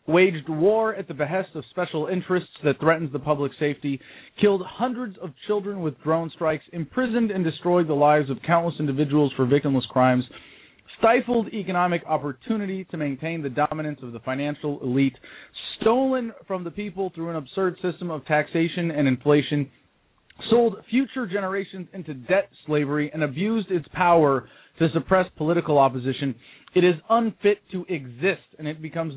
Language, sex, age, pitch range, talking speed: English, male, 30-49, 140-180 Hz, 155 wpm